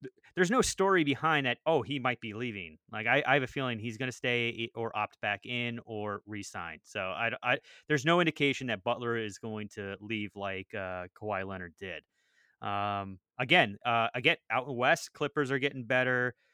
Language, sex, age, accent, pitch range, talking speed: English, male, 30-49, American, 110-135 Hz, 190 wpm